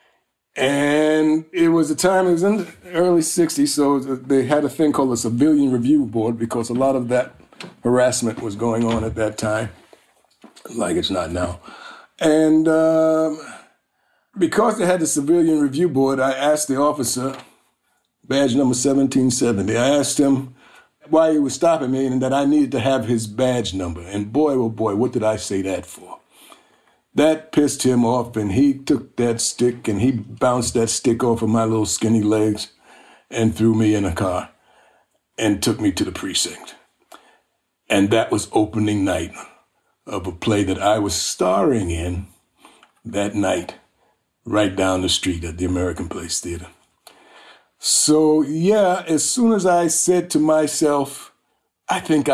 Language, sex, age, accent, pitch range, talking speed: English, male, 50-69, American, 110-155 Hz, 170 wpm